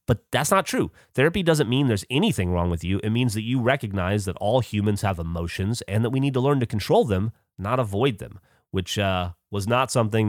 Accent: American